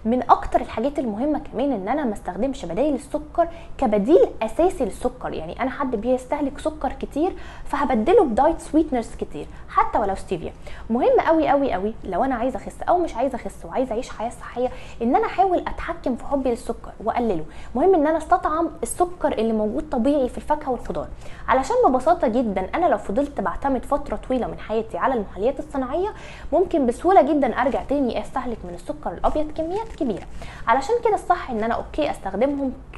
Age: 20-39